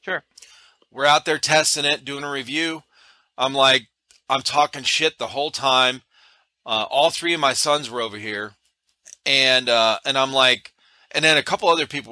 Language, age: English, 40-59